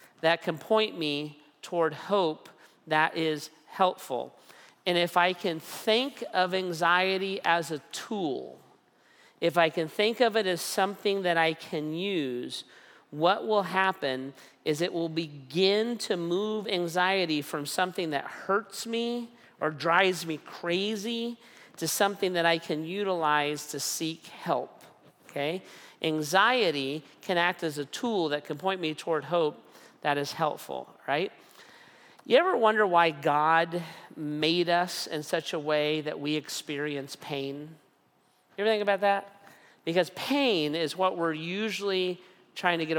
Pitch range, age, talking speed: 155-190 Hz, 40-59, 145 wpm